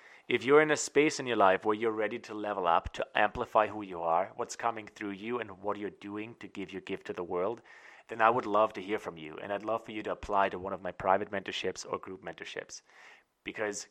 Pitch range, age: 100-125 Hz, 30-49